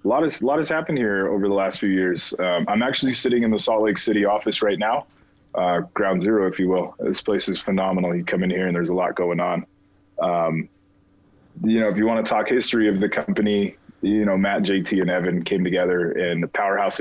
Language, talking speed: English, 240 wpm